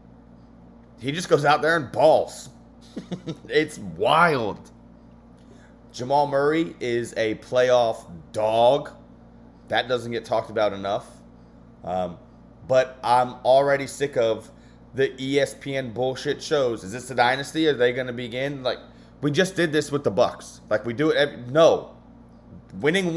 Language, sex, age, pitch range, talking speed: English, male, 30-49, 100-140 Hz, 140 wpm